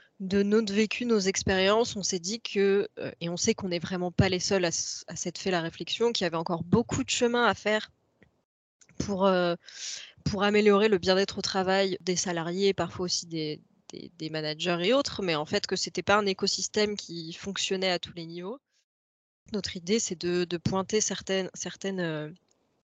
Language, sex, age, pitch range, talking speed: French, female, 20-39, 175-205 Hz, 195 wpm